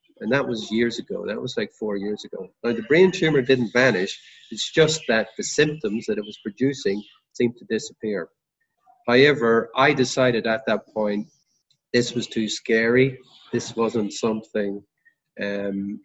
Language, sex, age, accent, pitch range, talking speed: English, male, 40-59, Irish, 105-130 Hz, 160 wpm